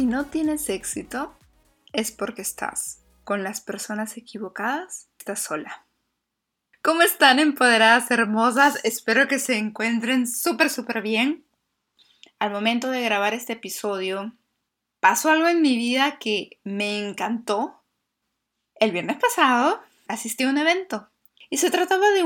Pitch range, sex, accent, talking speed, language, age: 205-270 Hz, female, Mexican, 130 wpm, Spanish, 20-39